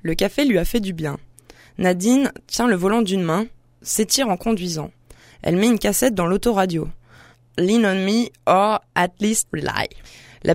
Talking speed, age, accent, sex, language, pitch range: 170 wpm, 20-39, French, female, French, 170-210 Hz